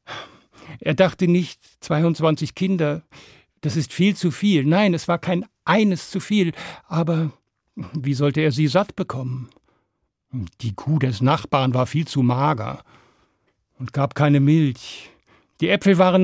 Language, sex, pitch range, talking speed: German, male, 135-175 Hz, 145 wpm